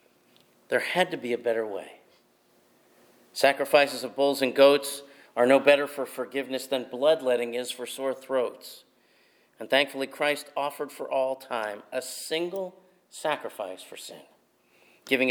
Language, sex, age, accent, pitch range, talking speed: English, male, 50-69, American, 125-145 Hz, 140 wpm